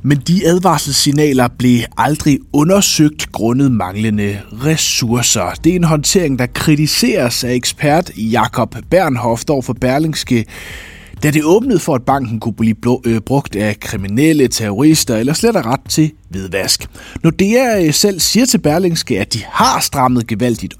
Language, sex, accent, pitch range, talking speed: Danish, male, native, 110-150 Hz, 140 wpm